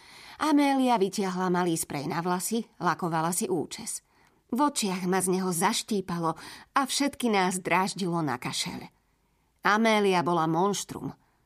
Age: 30-49